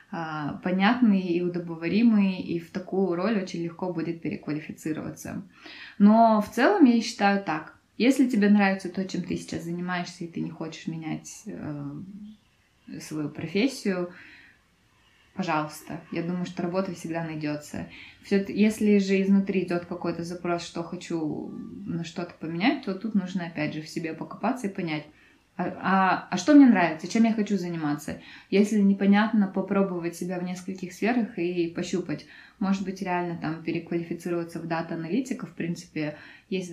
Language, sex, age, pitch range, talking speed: Russian, female, 20-39, 170-200 Hz, 145 wpm